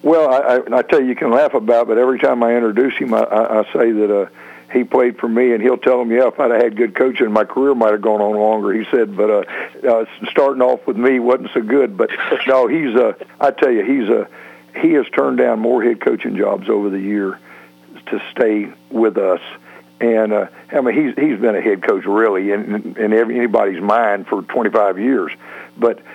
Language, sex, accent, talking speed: English, male, American, 225 wpm